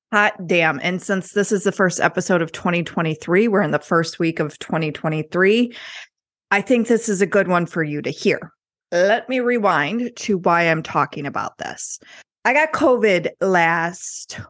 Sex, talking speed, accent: female, 175 wpm, American